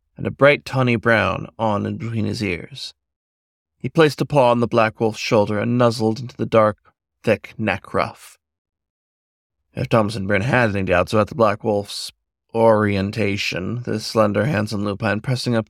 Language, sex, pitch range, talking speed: English, male, 95-120 Hz, 170 wpm